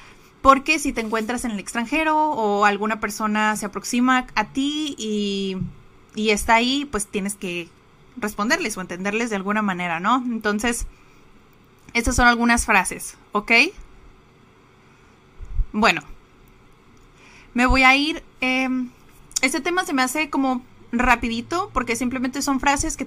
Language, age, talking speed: Spanish, 20-39, 135 wpm